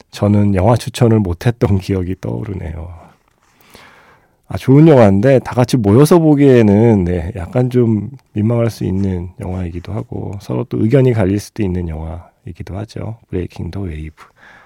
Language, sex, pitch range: Korean, male, 95-130 Hz